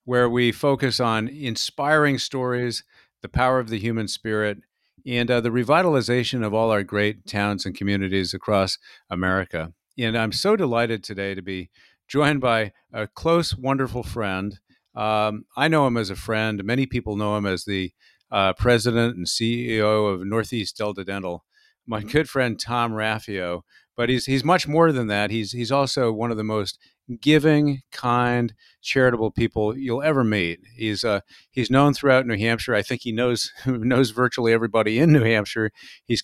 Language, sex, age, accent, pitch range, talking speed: English, male, 50-69, American, 105-130 Hz, 170 wpm